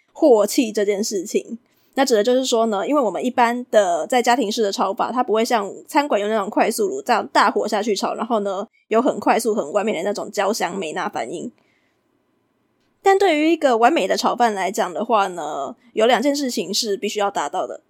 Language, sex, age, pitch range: Chinese, female, 20-39, 215-295 Hz